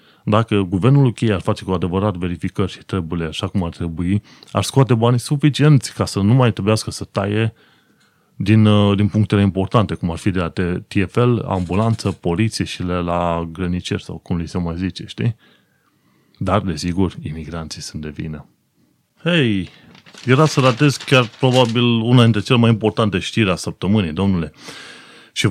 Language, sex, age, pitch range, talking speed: Romanian, male, 30-49, 95-115 Hz, 165 wpm